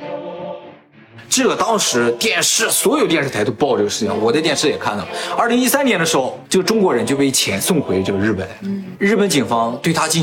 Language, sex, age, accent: Chinese, male, 20-39, native